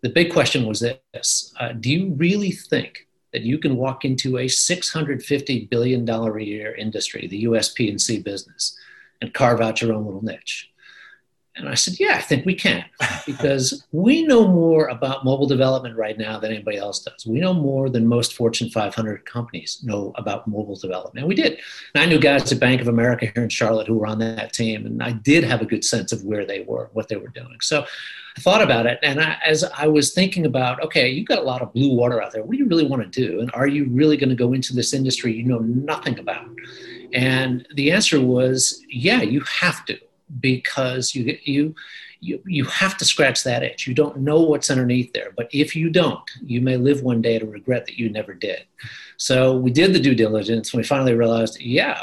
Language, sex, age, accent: English, male, 50-69, American